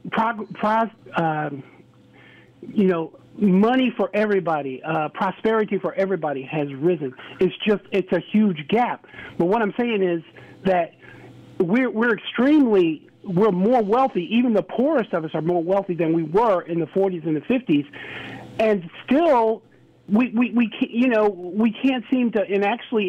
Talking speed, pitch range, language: 155 wpm, 170-220 Hz, English